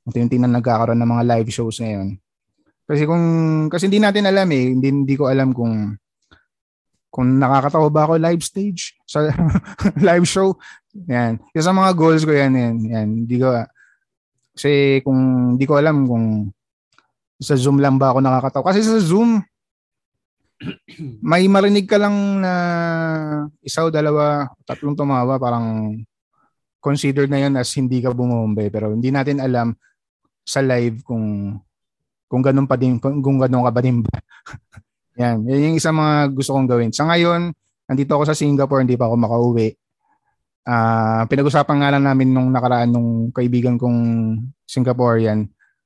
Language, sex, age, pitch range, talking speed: Filipino, male, 20-39, 115-150 Hz, 155 wpm